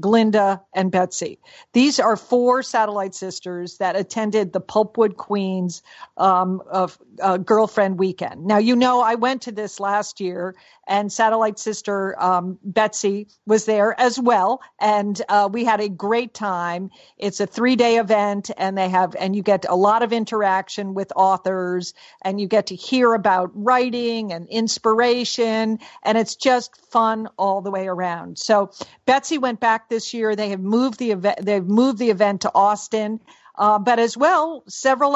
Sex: female